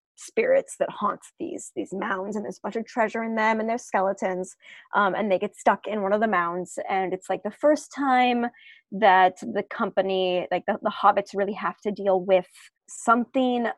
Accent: American